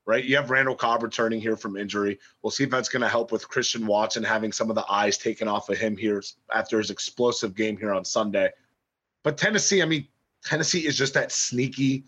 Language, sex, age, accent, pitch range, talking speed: English, male, 30-49, American, 125-170 Hz, 225 wpm